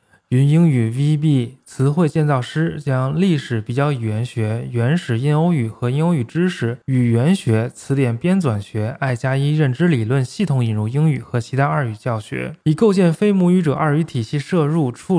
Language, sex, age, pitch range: Chinese, male, 20-39, 120-160 Hz